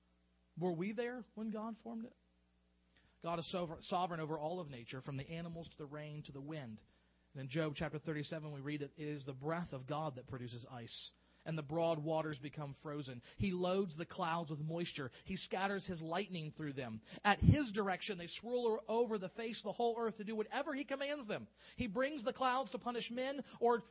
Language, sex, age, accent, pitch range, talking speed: English, male, 40-59, American, 135-195 Hz, 210 wpm